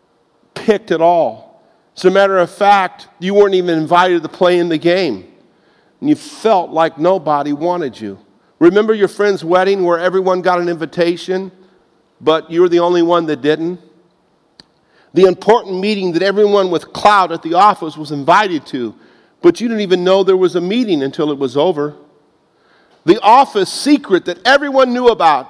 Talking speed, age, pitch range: 175 wpm, 50-69, 170-210 Hz